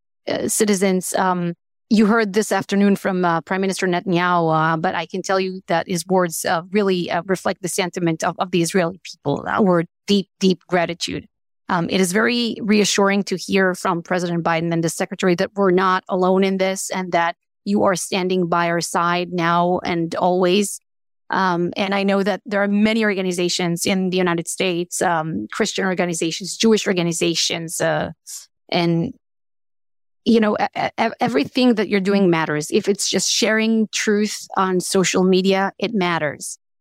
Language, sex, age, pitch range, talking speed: English, female, 30-49, 180-205 Hz, 165 wpm